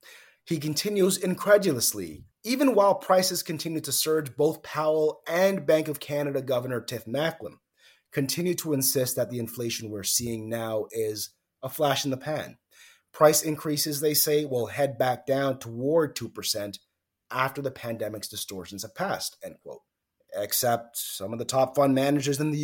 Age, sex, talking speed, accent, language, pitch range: 30-49, male, 160 wpm, American, English, 110-150 Hz